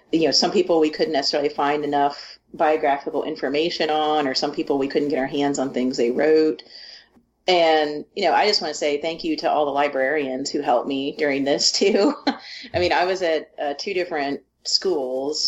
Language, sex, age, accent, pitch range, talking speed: English, female, 40-59, American, 140-160 Hz, 205 wpm